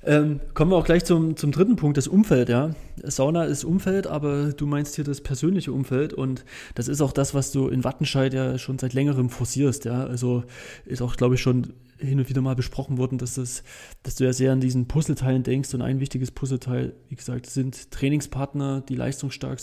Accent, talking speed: German, 210 wpm